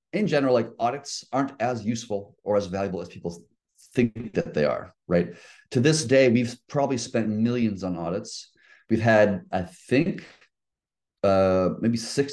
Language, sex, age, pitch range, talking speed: English, male, 30-49, 95-125 Hz, 160 wpm